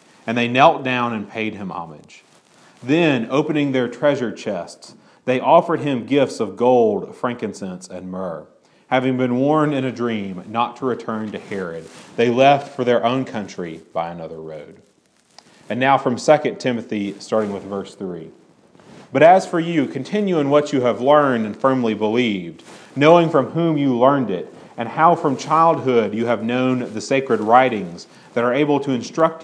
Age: 40-59